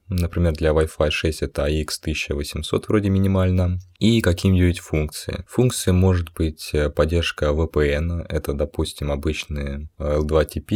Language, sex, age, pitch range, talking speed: Russian, male, 20-39, 75-90 Hz, 115 wpm